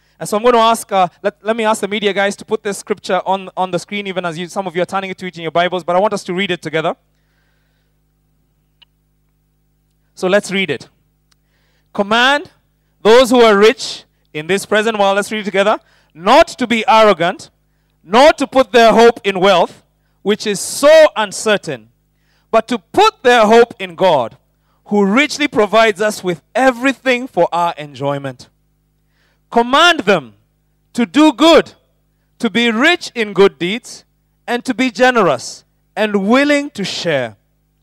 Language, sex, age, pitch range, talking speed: English, male, 30-49, 175-235 Hz, 180 wpm